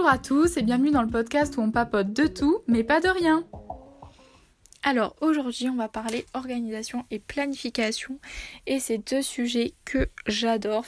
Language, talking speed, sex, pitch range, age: French, 165 wpm, female, 230-270 Hz, 10-29